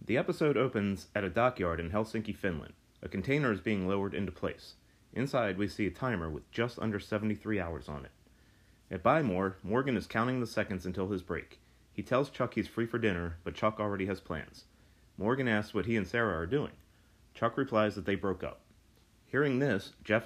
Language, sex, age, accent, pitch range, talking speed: English, male, 30-49, American, 95-115 Hz, 200 wpm